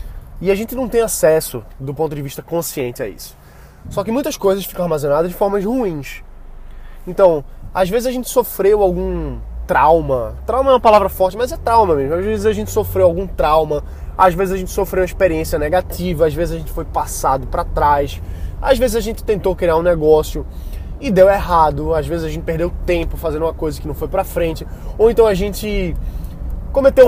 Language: Portuguese